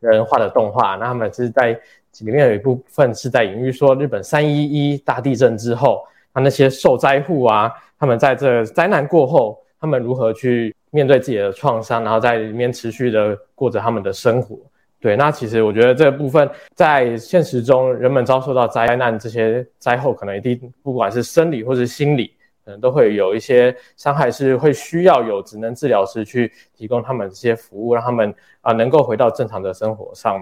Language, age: Chinese, 20-39